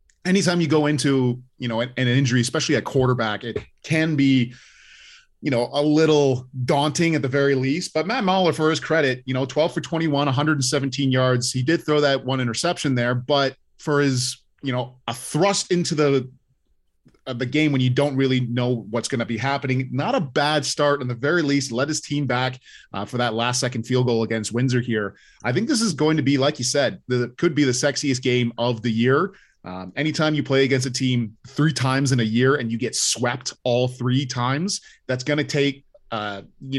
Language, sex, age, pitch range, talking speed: English, male, 30-49, 125-150 Hz, 215 wpm